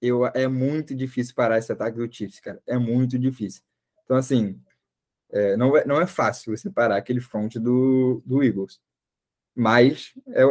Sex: male